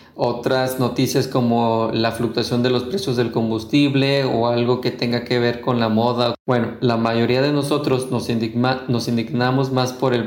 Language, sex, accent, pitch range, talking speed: Spanish, male, Mexican, 115-130 Hz, 180 wpm